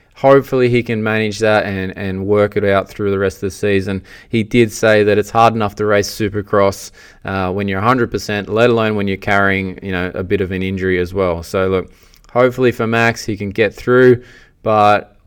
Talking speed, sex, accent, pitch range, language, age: 215 wpm, male, Australian, 95-115 Hz, English, 20-39